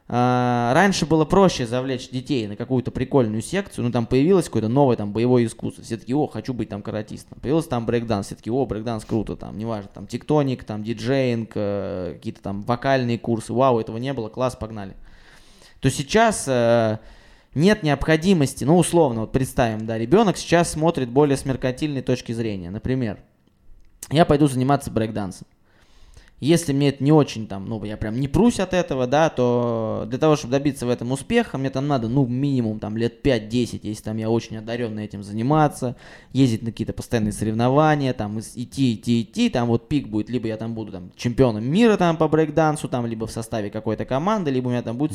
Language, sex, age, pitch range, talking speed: Russian, male, 20-39, 110-140 Hz, 185 wpm